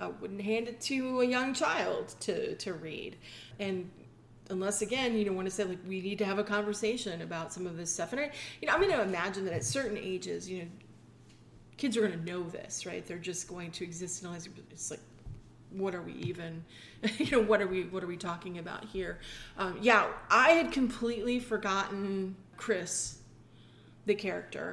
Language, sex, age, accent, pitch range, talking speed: English, female, 30-49, American, 185-230 Hz, 205 wpm